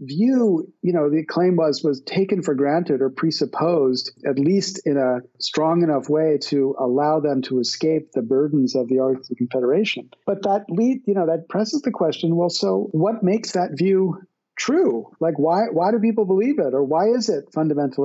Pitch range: 140-185 Hz